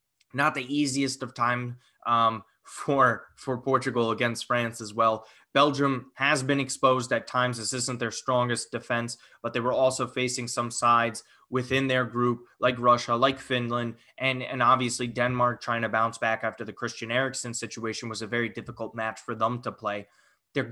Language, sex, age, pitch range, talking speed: English, male, 20-39, 115-125 Hz, 175 wpm